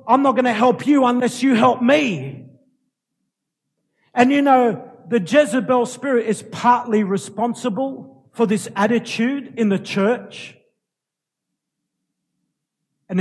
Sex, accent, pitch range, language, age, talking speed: male, Australian, 170-225 Hz, English, 50-69, 120 wpm